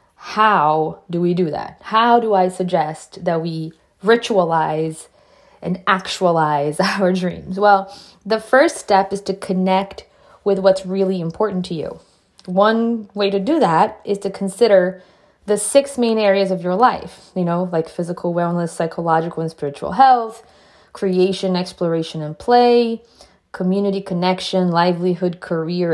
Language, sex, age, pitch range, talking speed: English, female, 20-39, 170-200 Hz, 140 wpm